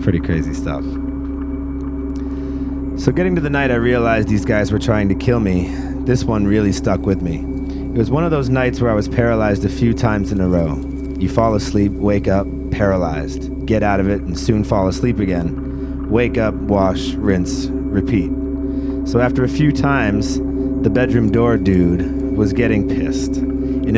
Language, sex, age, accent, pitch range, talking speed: English, male, 30-49, American, 90-130 Hz, 180 wpm